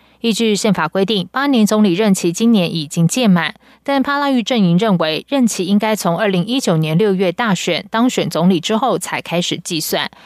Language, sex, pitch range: Chinese, female, 170-220 Hz